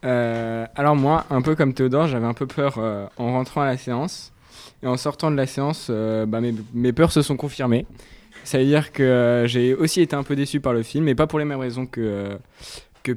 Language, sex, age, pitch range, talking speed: French, male, 20-39, 115-145 Hz, 245 wpm